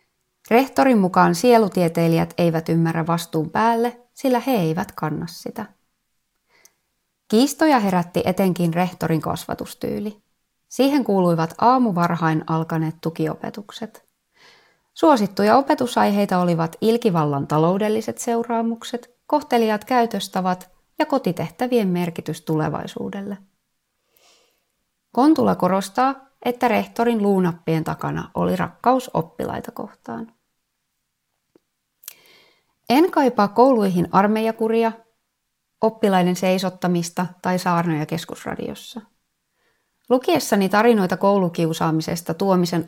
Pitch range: 170-235 Hz